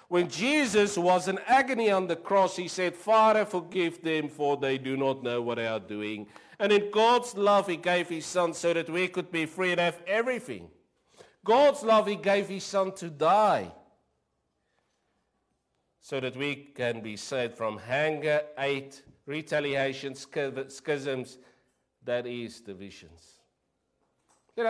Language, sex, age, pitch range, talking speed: English, male, 50-69, 135-210 Hz, 150 wpm